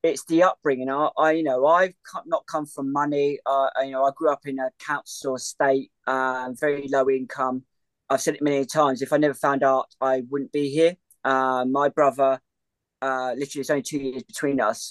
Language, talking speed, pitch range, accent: English, 205 wpm, 135-165 Hz, British